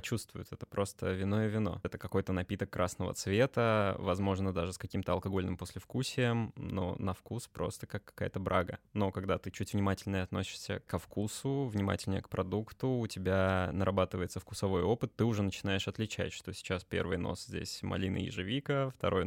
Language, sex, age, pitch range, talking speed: Russian, male, 20-39, 95-110 Hz, 160 wpm